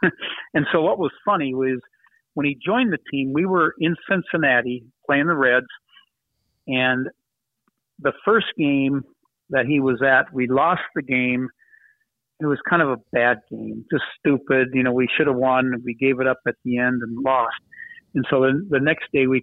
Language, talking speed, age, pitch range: English, 190 wpm, 50-69, 125-155 Hz